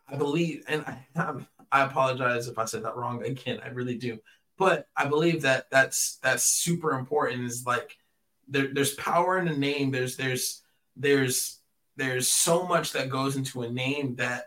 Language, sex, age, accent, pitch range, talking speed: English, male, 20-39, American, 125-145 Hz, 185 wpm